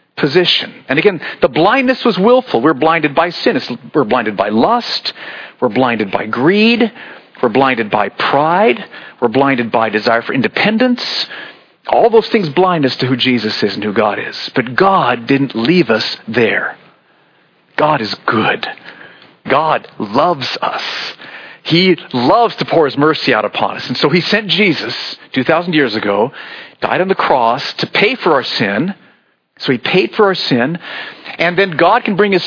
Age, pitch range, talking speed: 40-59, 165-230 Hz, 170 wpm